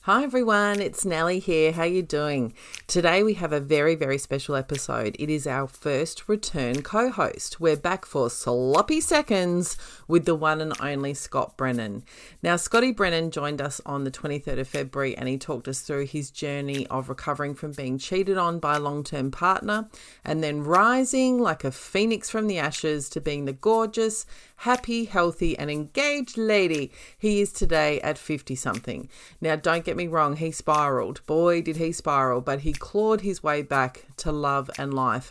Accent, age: Australian, 40-59